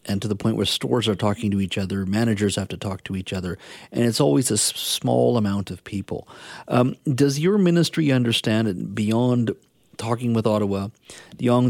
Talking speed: 185 wpm